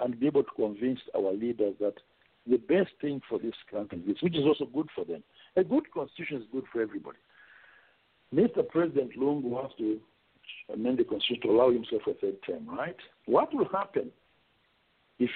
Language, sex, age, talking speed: English, male, 60-79, 190 wpm